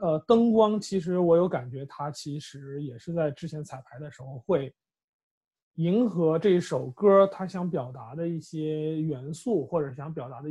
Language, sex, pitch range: Chinese, male, 145-190 Hz